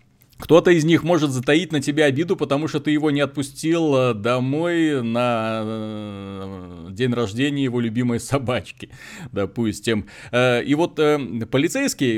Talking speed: 125 wpm